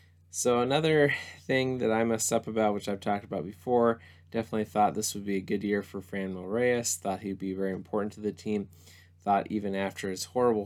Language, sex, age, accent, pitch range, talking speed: English, male, 20-39, American, 90-110 Hz, 210 wpm